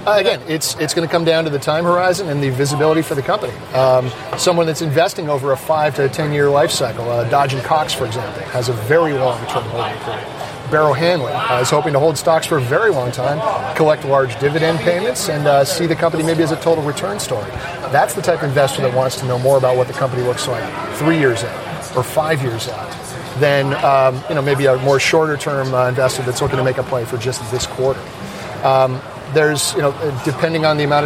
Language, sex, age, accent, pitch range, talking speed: English, male, 40-59, American, 130-155 Hz, 240 wpm